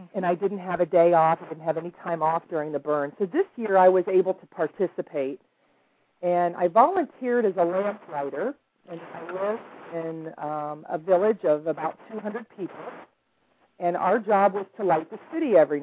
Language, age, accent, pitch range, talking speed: English, 40-59, American, 165-215 Hz, 195 wpm